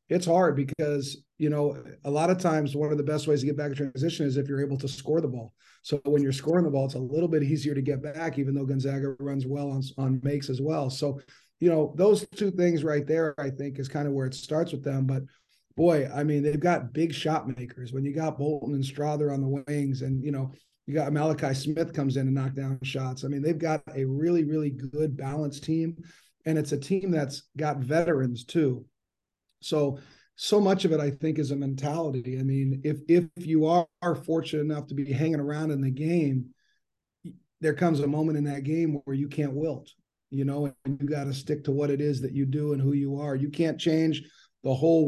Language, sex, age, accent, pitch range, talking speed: English, male, 40-59, American, 135-155 Hz, 235 wpm